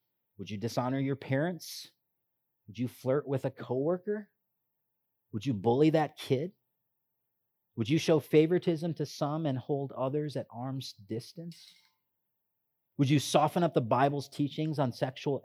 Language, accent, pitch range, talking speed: English, American, 125-175 Hz, 145 wpm